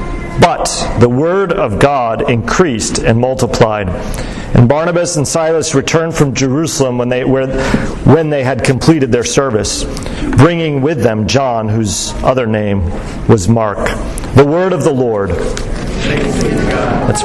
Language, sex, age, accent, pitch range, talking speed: English, male, 40-59, American, 115-150 Hz, 135 wpm